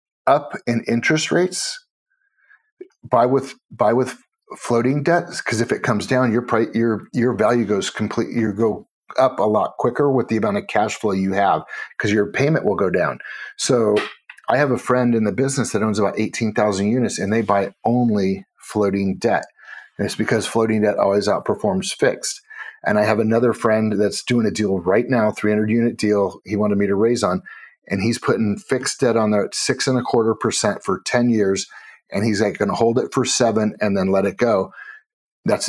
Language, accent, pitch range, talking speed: English, American, 105-130 Hz, 205 wpm